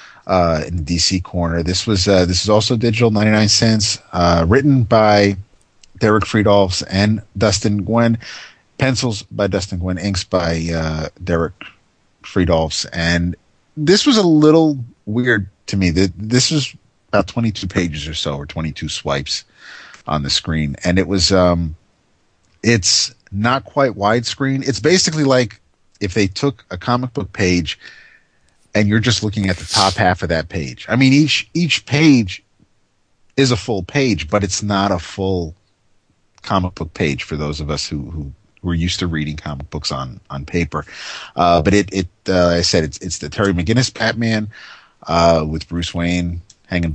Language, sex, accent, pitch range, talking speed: English, male, American, 85-110 Hz, 165 wpm